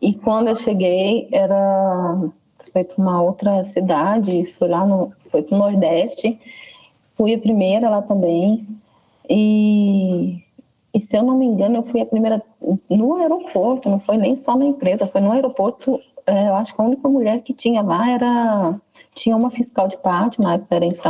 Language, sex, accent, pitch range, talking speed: Portuguese, female, Brazilian, 190-230 Hz, 165 wpm